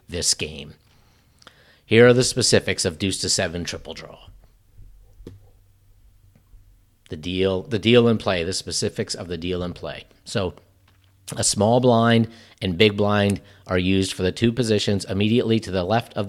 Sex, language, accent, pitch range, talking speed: male, English, American, 90-110 Hz, 160 wpm